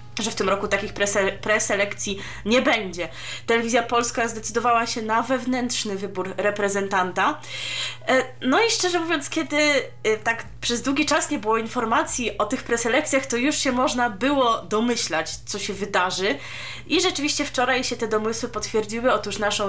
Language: Polish